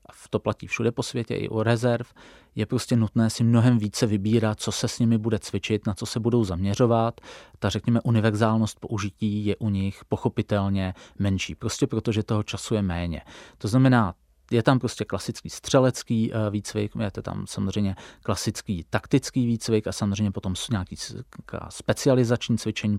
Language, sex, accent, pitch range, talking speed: Czech, male, native, 100-115 Hz, 165 wpm